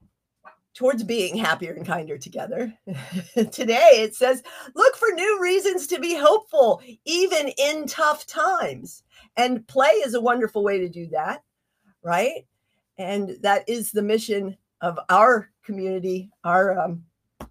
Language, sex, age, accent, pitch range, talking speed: English, female, 50-69, American, 180-250 Hz, 135 wpm